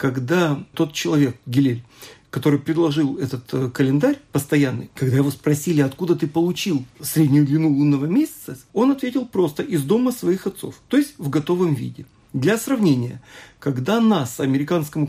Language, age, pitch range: Russian, 40-59, 145-210 Hz